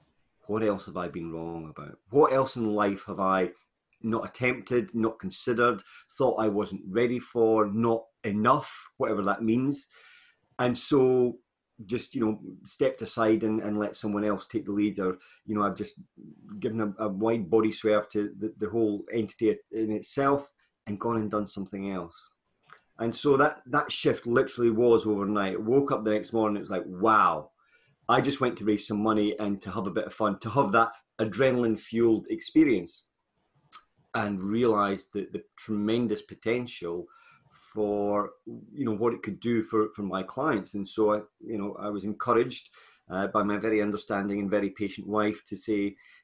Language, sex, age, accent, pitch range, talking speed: English, male, 30-49, British, 105-120 Hz, 180 wpm